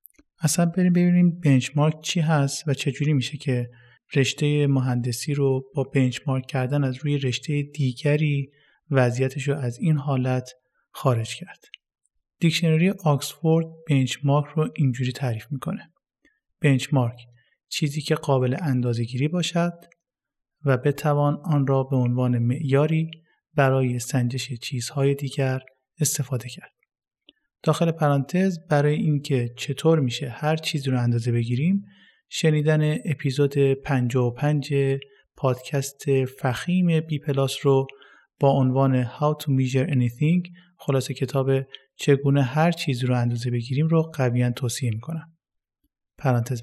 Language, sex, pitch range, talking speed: Persian, male, 130-155 Hz, 120 wpm